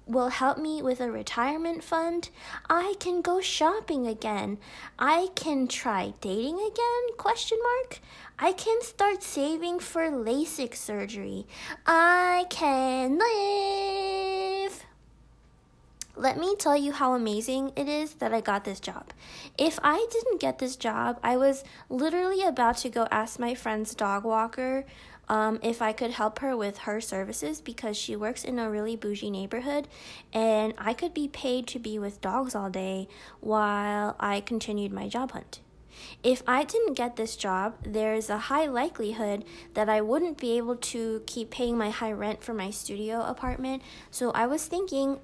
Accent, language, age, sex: American, English, 20-39, female